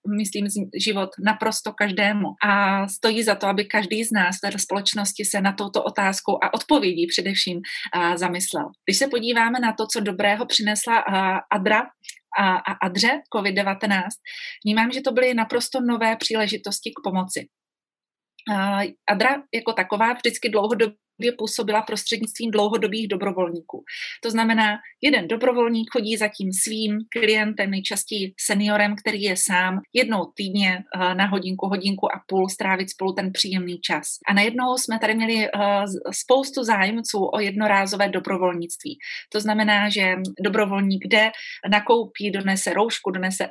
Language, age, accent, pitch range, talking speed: Czech, 30-49, native, 195-225 Hz, 135 wpm